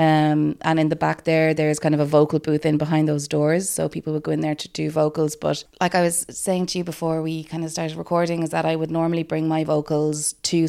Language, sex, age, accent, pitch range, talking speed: English, female, 20-39, Irish, 155-190 Hz, 265 wpm